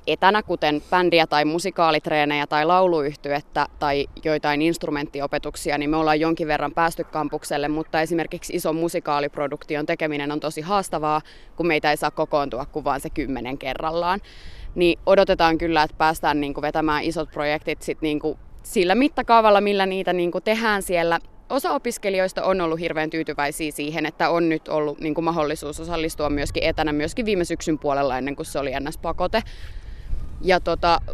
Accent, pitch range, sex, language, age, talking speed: native, 150-170 Hz, female, Finnish, 20-39, 145 wpm